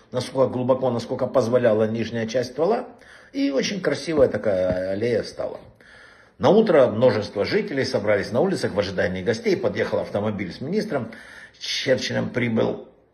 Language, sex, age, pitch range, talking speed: Russian, male, 60-79, 100-140 Hz, 135 wpm